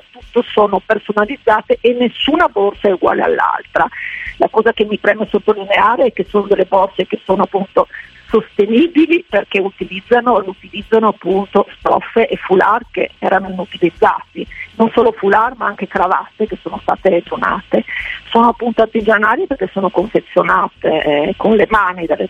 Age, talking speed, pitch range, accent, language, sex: 50-69, 150 wpm, 195-240 Hz, native, Italian, female